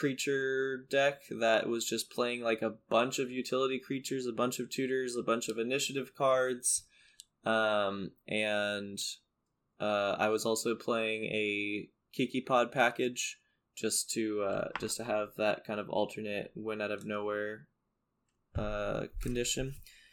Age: 10-29